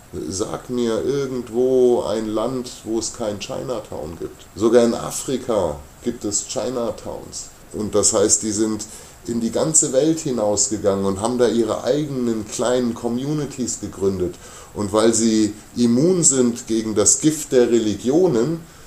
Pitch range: 110-135 Hz